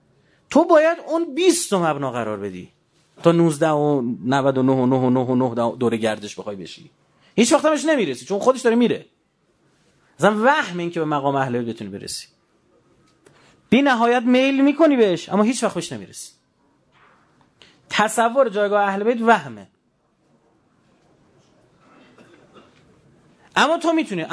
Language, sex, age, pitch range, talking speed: Persian, male, 30-49, 140-215 Hz, 125 wpm